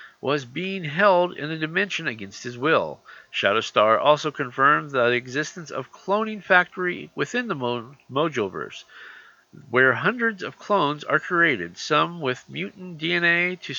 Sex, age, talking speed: male, 50-69, 140 wpm